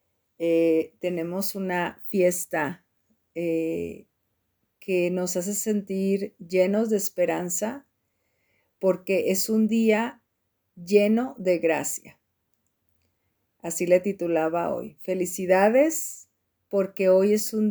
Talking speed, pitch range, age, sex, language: 95 wpm, 170-205 Hz, 50-69, female, Spanish